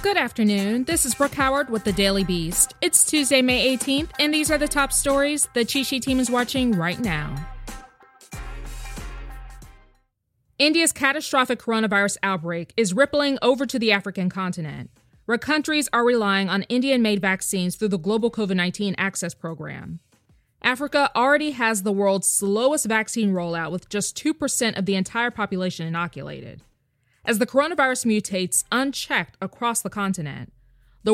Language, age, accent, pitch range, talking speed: English, 20-39, American, 185-255 Hz, 150 wpm